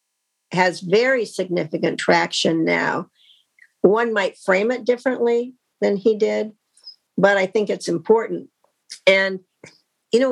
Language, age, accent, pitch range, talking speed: English, 50-69, American, 180-225 Hz, 120 wpm